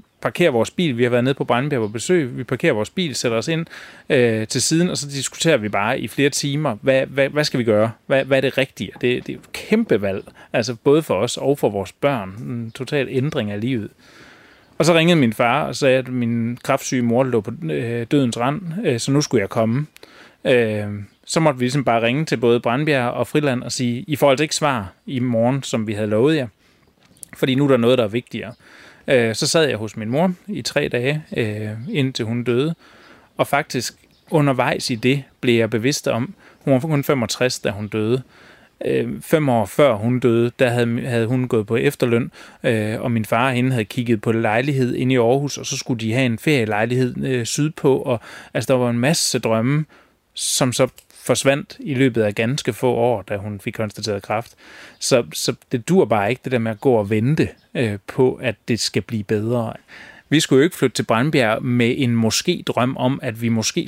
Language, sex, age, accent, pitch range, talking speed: Danish, male, 30-49, native, 115-140 Hz, 215 wpm